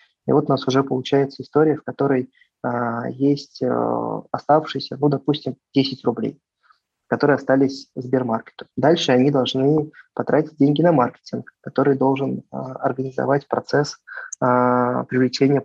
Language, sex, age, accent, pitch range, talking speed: Russian, male, 20-39, native, 130-145 Hz, 125 wpm